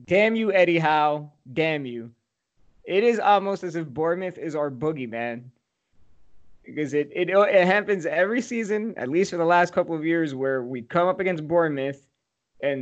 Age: 20-39